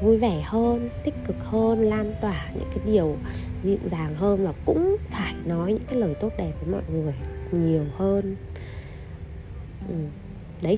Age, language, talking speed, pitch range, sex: 20-39, Vietnamese, 160 wpm, 170-240 Hz, female